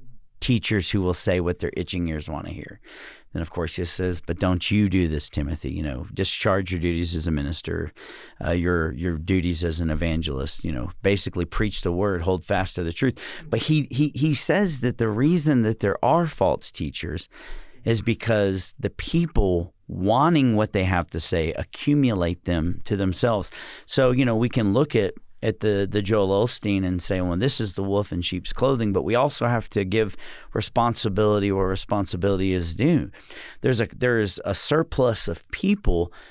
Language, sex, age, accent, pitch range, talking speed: English, male, 40-59, American, 90-120 Hz, 190 wpm